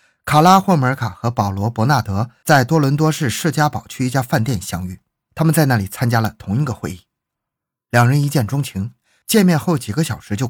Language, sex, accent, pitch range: Chinese, male, native, 105-150 Hz